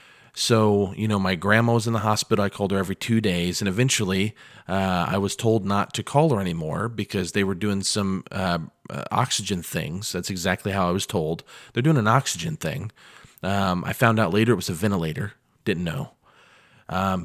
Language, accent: English, American